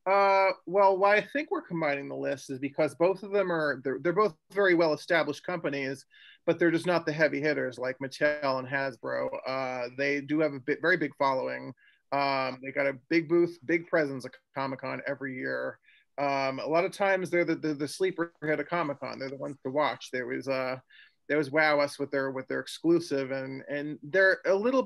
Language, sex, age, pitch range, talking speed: English, male, 30-49, 135-170 Hz, 215 wpm